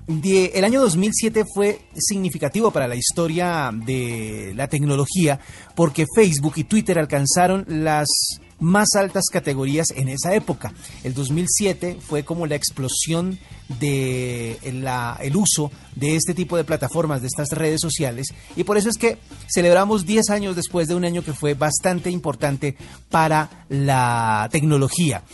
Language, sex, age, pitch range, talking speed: Spanish, male, 40-59, 140-180 Hz, 140 wpm